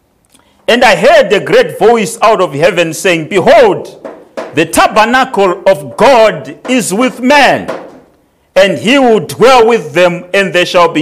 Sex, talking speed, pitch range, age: male, 150 wpm, 140-215 Hz, 40-59